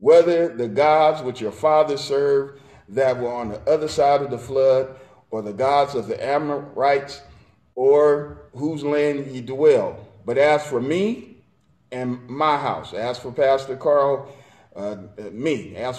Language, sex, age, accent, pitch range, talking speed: English, male, 40-59, American, 125-170 Hz, 155 wpm